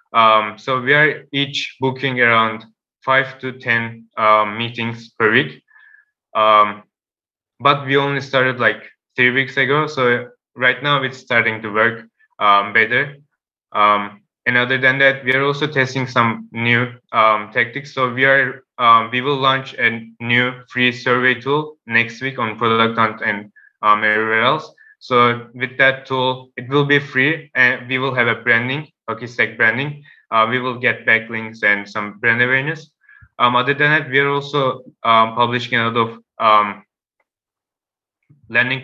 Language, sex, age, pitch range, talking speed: English, male, 20-39, 115-135 Hz, 160 wpm